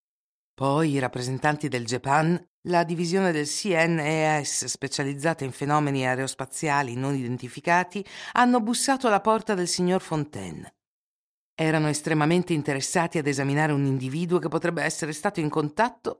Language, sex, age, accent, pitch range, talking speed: Italian, female, 50-69, native, 140-190 Hz, 130 wpm